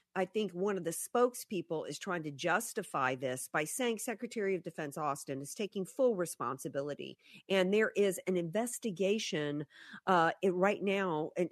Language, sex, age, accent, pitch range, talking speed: English, female, 50-69, American, 165-220 Hz, 160 wpm